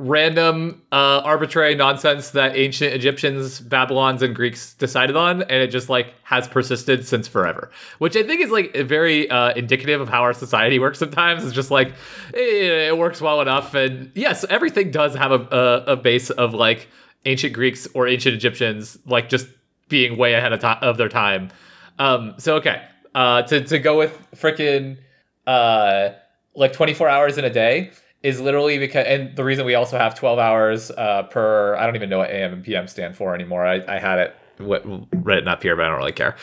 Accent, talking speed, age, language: American, 200 wpm, 30-49, English